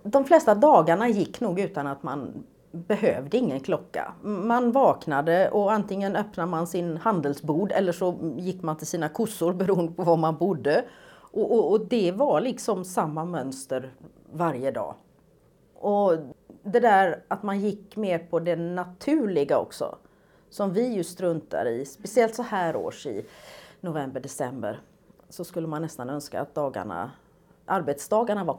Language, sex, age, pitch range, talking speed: Swedish, female, 40-59, 165-220 Hz, 155 wpm